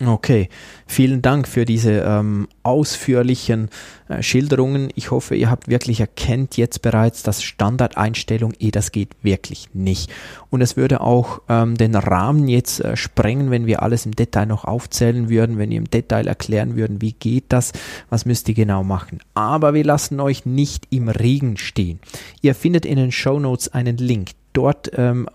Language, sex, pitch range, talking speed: German, male, 110-135 Hz, 175 wpm